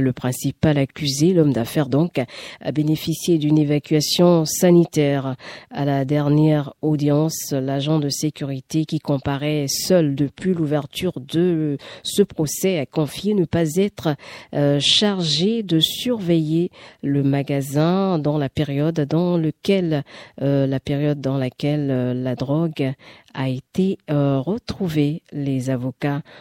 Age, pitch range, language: 50-69, 135-170 Hz, French